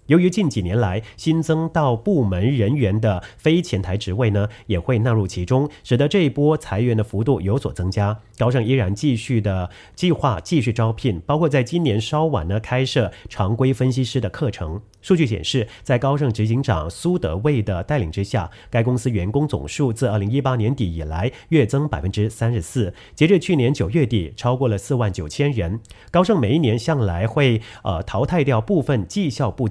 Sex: male